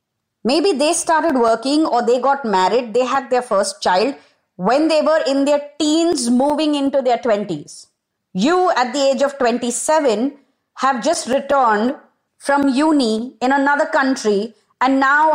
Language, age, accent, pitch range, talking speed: English, 20-39, Indian, 210-290 Hz, 155 wpm